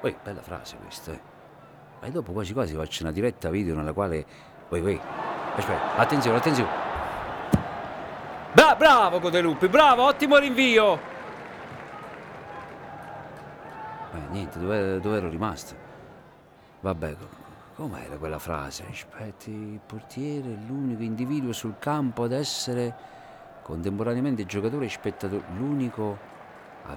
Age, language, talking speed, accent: 50-69, Italian, 115 wpm, native